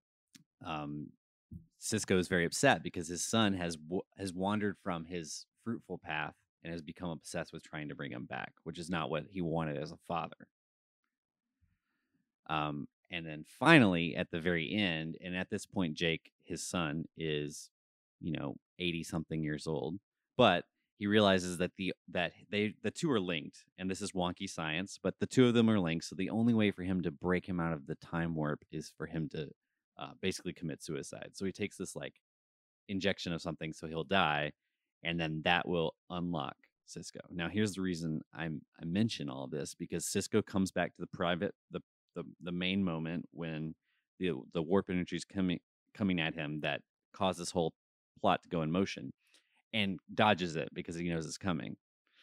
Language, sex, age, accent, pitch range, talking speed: English, male, 30-49, American, 80-95 Hz, 190 wpm